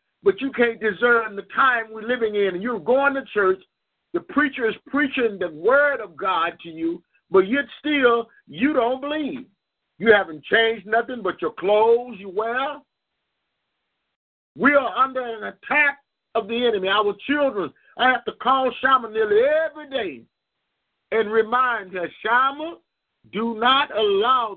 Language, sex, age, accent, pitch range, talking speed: English, male, 50-69, American, 180-265 Hz, 155 wpm